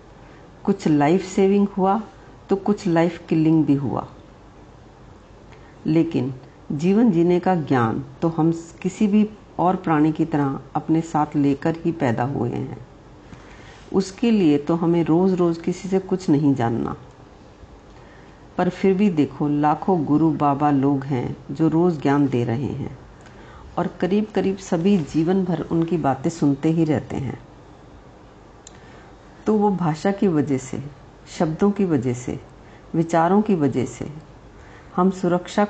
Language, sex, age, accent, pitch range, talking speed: Hindi, female, 50-69, native, 140-190 Hz, 140 wpm